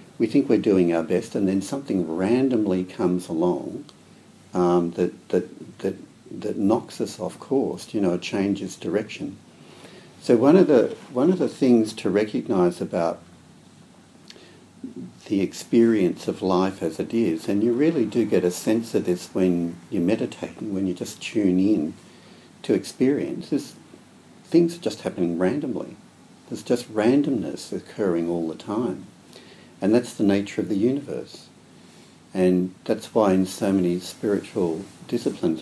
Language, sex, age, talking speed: English, male, 60-79, 155 wpm